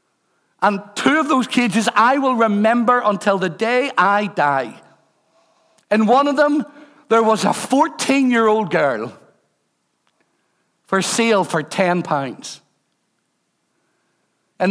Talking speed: 115 wpm